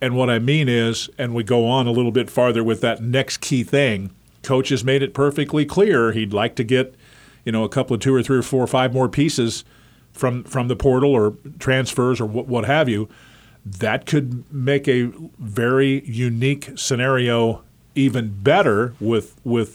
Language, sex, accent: English, male, American